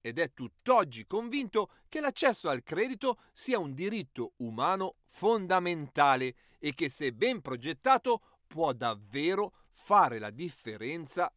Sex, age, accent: male, 40-59, native